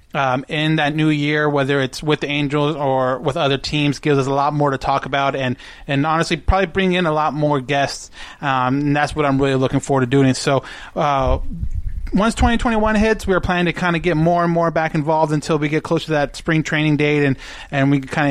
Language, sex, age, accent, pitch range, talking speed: English, male, 30-49, American, 140-160 Hz, 235 wpm